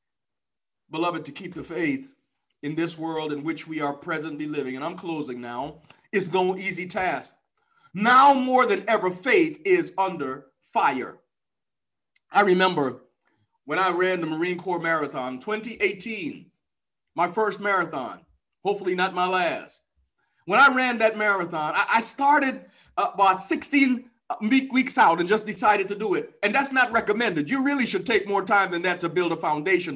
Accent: American